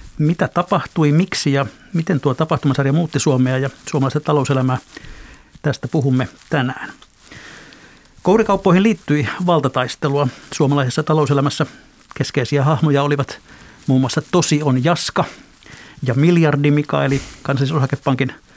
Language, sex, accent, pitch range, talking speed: Finnish, male, native, 135-155 Hz, 105 wpm